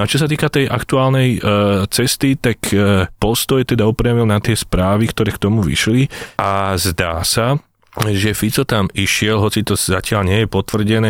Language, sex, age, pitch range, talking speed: Slovak, male, 30-49, 95-110 Hz, 185 wpm